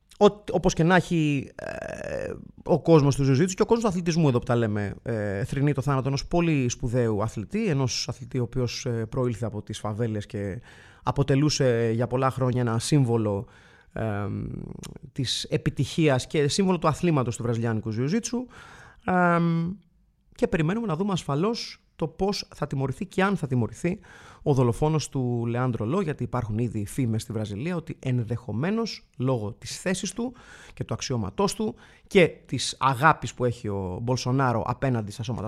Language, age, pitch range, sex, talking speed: Greek, 30-49, 115-165 Hz, male, 160 wpm